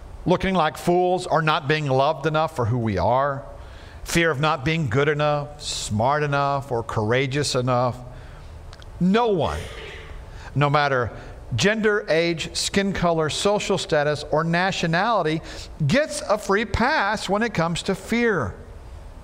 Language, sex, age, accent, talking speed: English, male, 50-69, American, 135 wpm